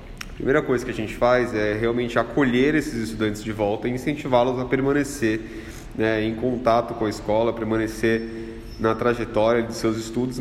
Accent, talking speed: Brazilian, 175 wpm